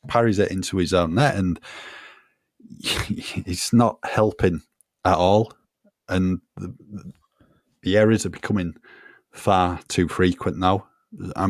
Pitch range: 90-115 Hz